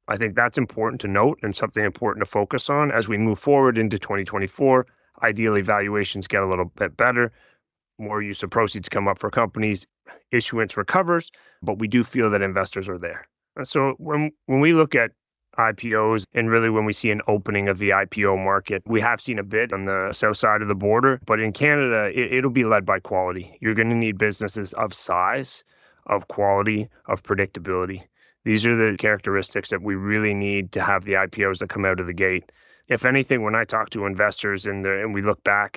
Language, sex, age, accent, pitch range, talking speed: English, male, 30-49, American, 100-115 Hz, 205 wpm